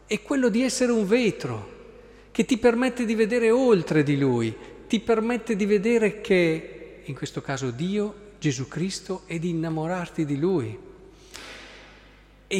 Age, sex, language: 50-69, male, Italian